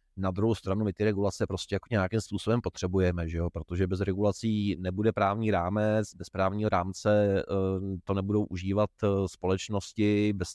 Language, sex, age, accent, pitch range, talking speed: Czech, male, 30-49, native, 95-110 Hz, 150 wpm